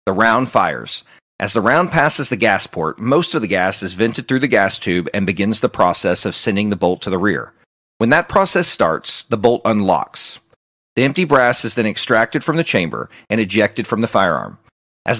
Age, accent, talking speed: 40-59, American, 210 wpm